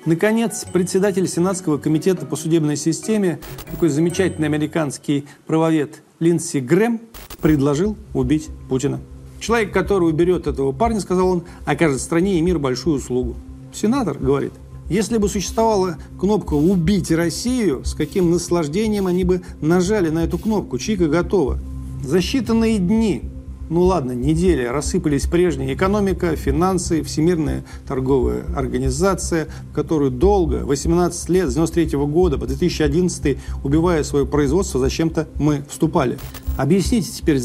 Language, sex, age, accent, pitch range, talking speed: Russian, male, 40-59, native, 145-185 Hz, 125 wpm